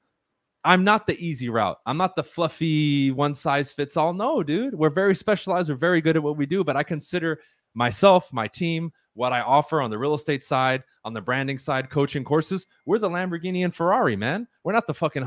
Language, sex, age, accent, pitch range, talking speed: English, male, 30-49, American, 125-170 Hz, 205 wpm